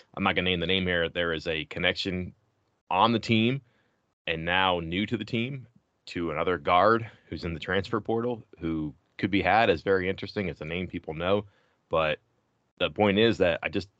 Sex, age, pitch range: male, 30-49, 80-100 Hz